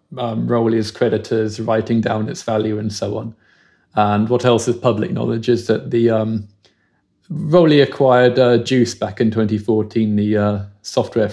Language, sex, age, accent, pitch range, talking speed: English, male, 20-39, British, 105-120 Hz, 170 wpm